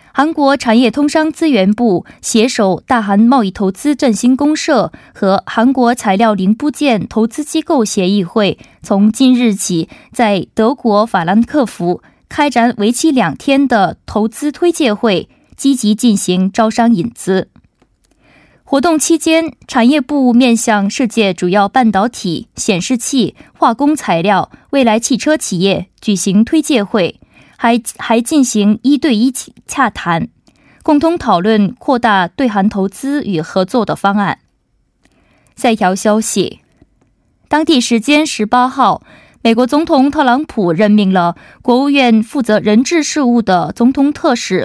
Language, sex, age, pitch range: Korean, female, 20-39, 205-275 Hz